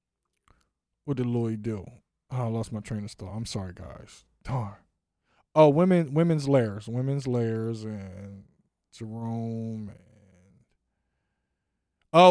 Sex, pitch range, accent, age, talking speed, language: male, 110-170 Hz, American, 20-39, 120 wpm, English